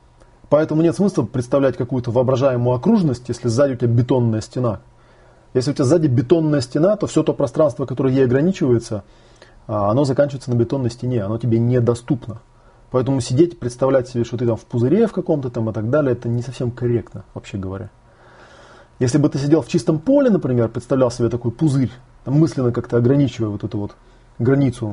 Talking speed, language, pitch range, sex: 180 wpm, Russian, 115-145 Hz, male